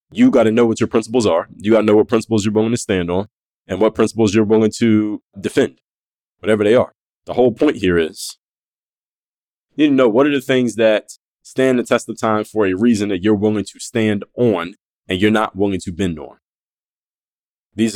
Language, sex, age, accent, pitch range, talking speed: English, male, 20-39, American, 100-115 Hz, 215 wpm